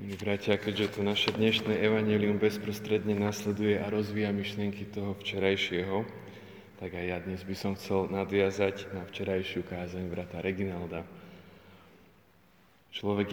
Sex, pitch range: male, 95-105 Hz